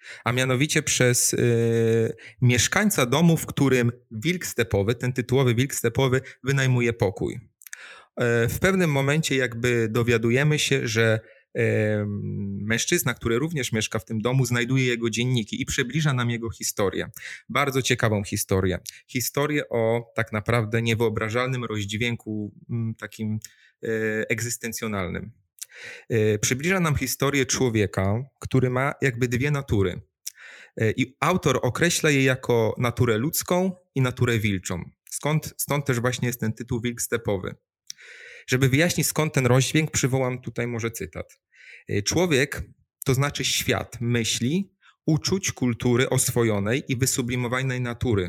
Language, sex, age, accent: Polish, male, 30-49, native